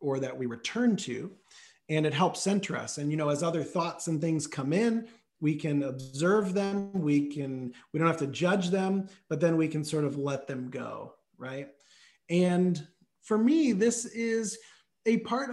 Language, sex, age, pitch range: English, male, 30-49, 145-200 Hz